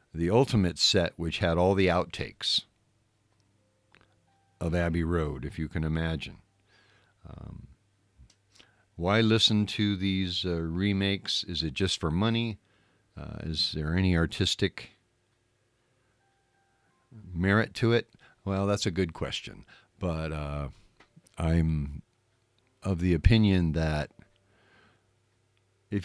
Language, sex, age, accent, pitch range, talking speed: English, male, 50-69, American, 85-105 Hz, 110 wpm